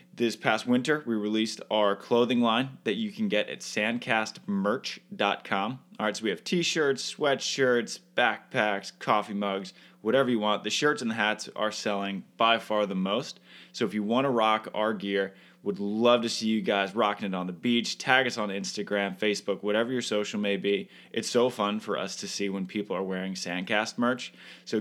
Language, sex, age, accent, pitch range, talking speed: English, male, 20-39, American, 100-125 Hz, 195 wpm